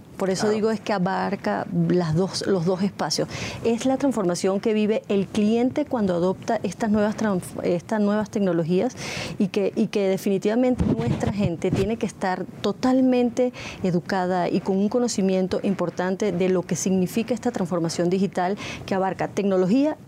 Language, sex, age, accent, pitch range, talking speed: Spanish, female, 30-49, American, 180-215 Hz, 160 wpm